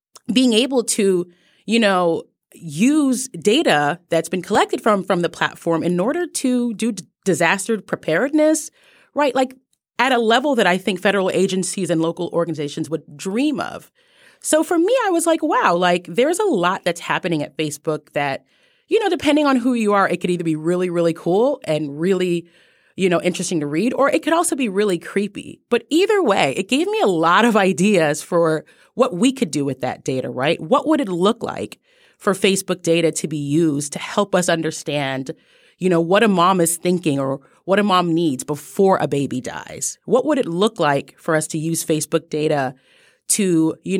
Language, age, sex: English, 30-49, female